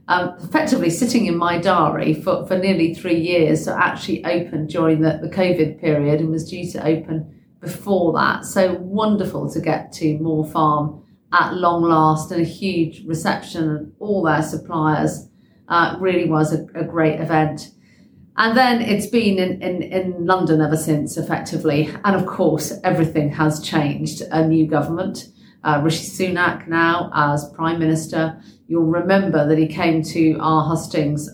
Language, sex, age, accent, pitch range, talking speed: English, female, 40-59, British, 155-180 Hz, 165 wpm